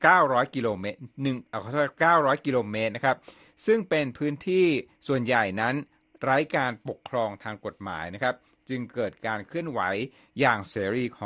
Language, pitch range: Thai, 105-145 Hz